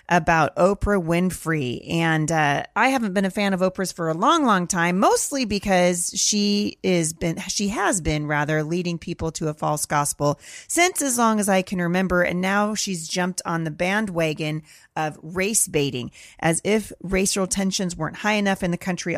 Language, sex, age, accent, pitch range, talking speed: English, female, 30-49, American, 165-200 Hz, 185 wpm